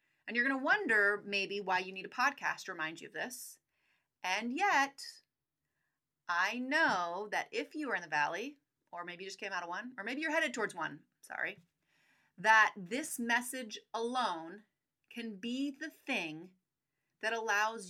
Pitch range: 190-270 Hz